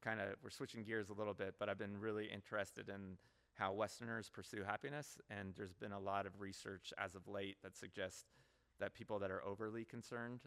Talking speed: 205 wpm